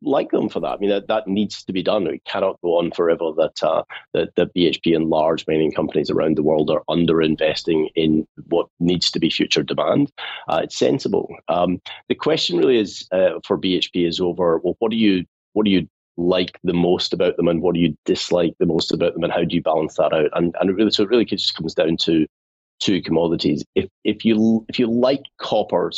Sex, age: male, 30-49